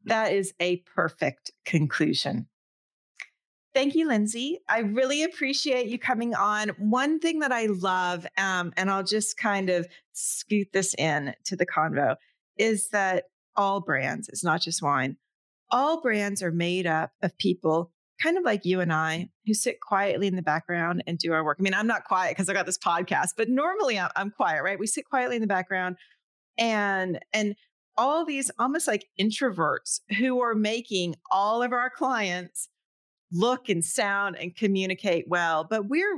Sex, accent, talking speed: female, American, 175 wpm